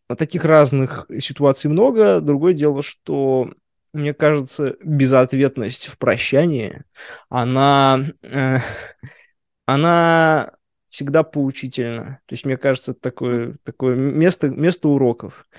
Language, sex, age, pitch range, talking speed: Russian, male, 20-39, 130-155 Hz, 105 wpm